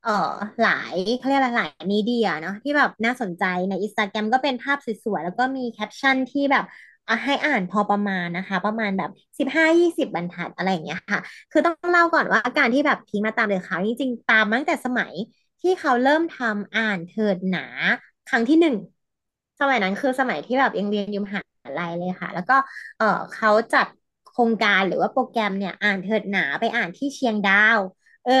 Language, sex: Thai, female